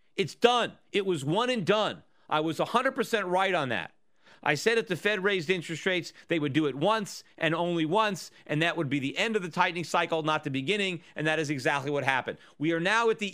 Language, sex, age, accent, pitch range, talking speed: English, male, 40-59, American, 155-190 Hz, 240 wpm